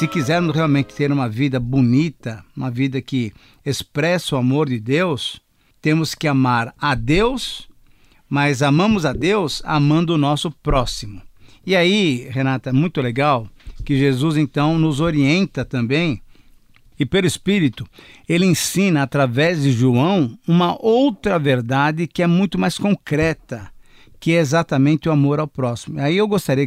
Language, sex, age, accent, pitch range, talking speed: Portuguese, male, 50-69, Brazilian, 130-170 Hz, 150 wpm